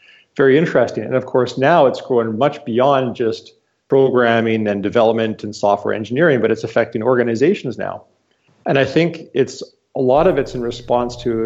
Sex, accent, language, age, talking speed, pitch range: male, American, English, 40-59, 175 wpm, 110-130 Hz